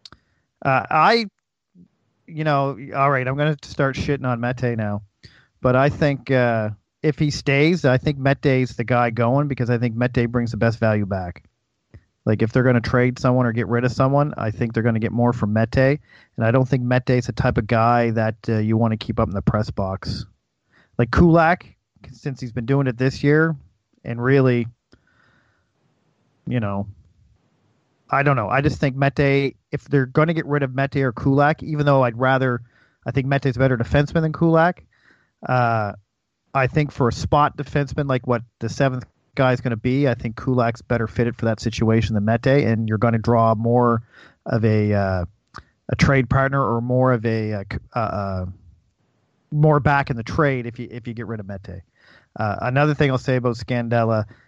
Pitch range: 115-140 Hz